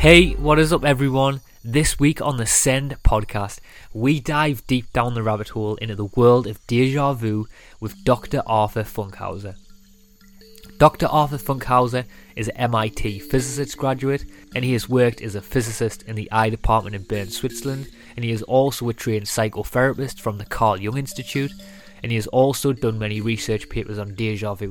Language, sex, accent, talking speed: English, male, British, 175 wpm